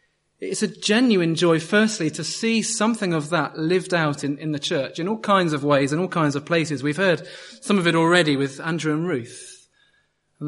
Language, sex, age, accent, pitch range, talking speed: English, male, 30-49, British, 135-175 Hz, 210 wpm